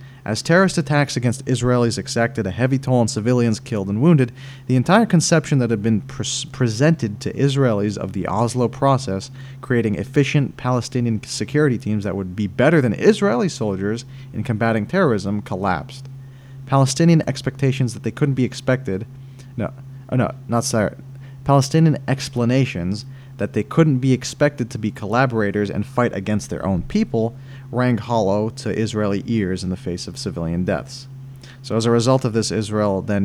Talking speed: 160 wpm